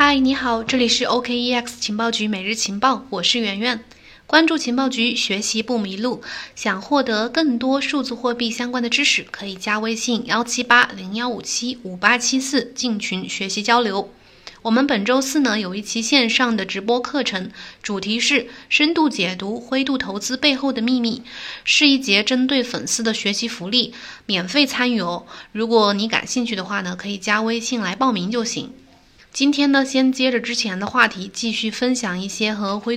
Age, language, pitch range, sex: 20-39, Chinese, 205-255 Hz, female